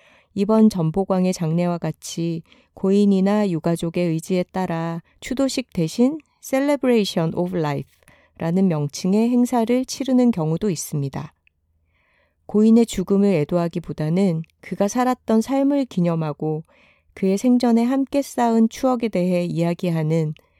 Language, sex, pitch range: Korean, female, 165-225 Hz